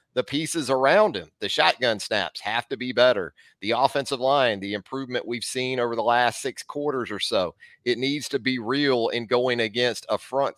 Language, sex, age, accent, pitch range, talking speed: English, male, 40-59, American, 115-145 Hz, 200 wpm